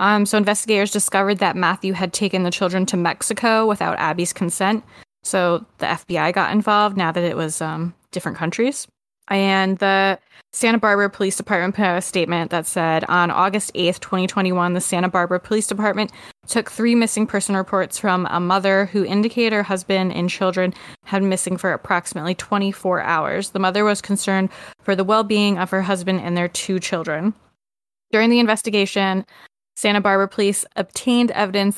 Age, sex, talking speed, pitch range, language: 20-39, female, 170 wpm, 180-205 Hz, English